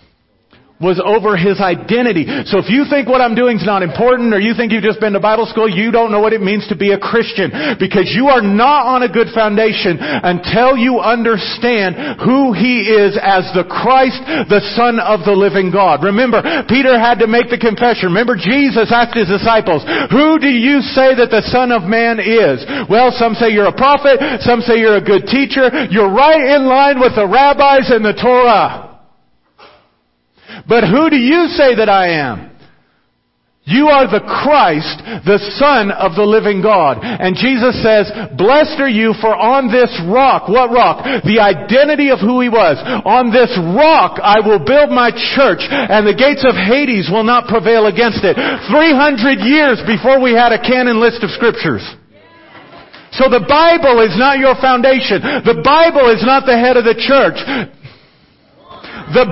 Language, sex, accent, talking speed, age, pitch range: English, male, American, 185 wpm, 50-69, 210-265 Hz